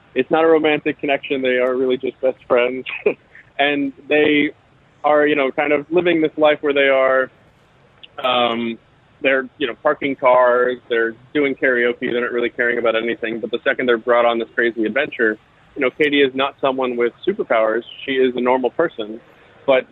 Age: 20-39